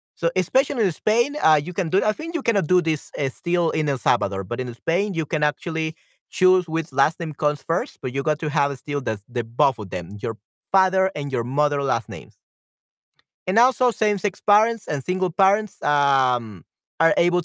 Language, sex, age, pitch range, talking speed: Spanish, male, 30-49, 130-185 Hz, 205 wpm